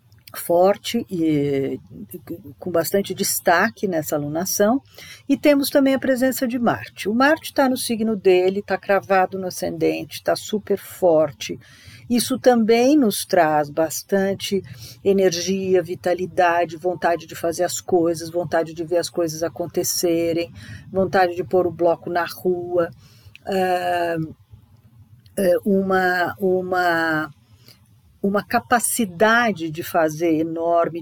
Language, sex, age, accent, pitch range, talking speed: Portuguese, female, 50-69, Brazilian, 155-210 Hz, 115 wpm